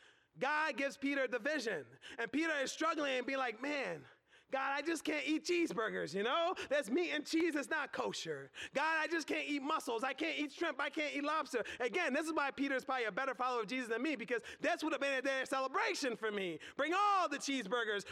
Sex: male